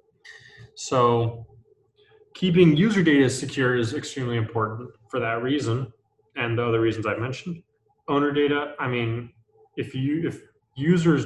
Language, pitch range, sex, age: English, 115-150 Hz, male, 20-39